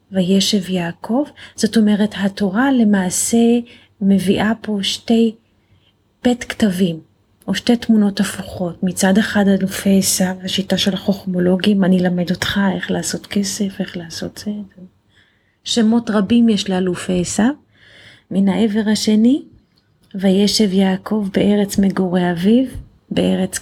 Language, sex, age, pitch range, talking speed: Hebrew, female, 30-49, 180-215 Hz, 115 wpm